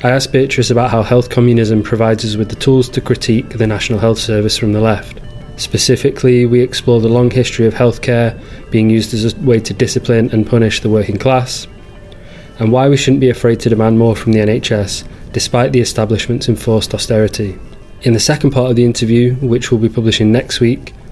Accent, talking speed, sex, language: British, 200 wpm, male, English